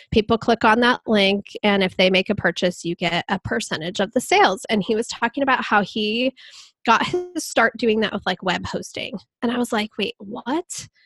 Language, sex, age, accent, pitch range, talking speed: English, female, 10-29, American, 205-240 Hz, 215 wpm